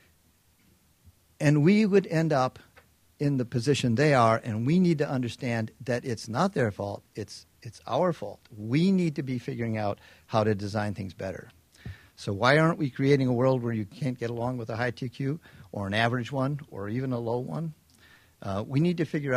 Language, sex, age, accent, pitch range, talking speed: English, male, 50-69, American, 110-135 Hz, 200 wpm